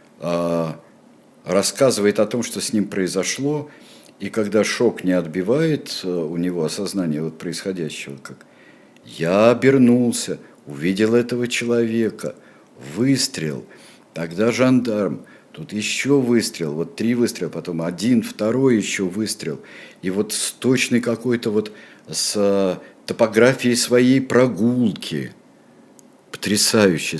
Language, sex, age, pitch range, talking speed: Russian, male, 50-69, 85-115 Hz, 100 wpm